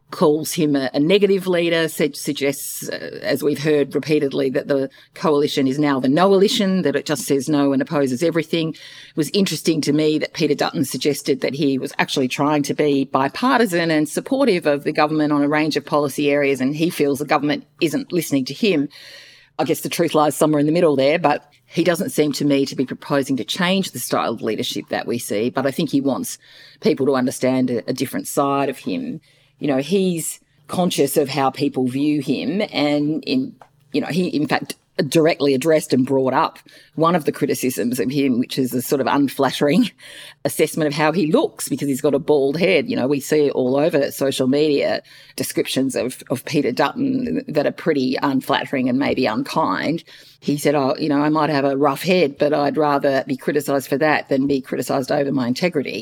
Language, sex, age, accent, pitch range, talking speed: English, female, 40-59, Australian, 140-165 Hz, 210 wpm